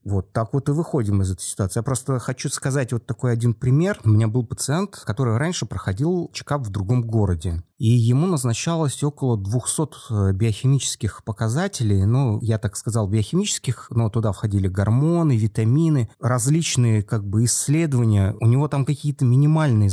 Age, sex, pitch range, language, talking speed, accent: 30-49, male, 105-135 Hz, Russian, 160 wpm, native